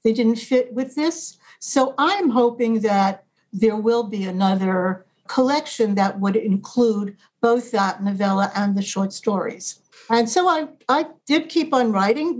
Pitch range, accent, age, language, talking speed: 205-260 Hz, American, 60-79, English, 155 wpm